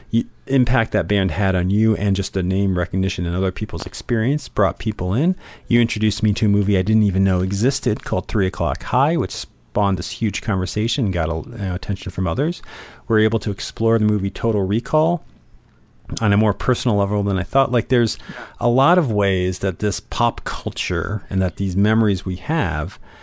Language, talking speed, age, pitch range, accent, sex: English, 200 wpm, 40-59, 95-120 Hz, American, male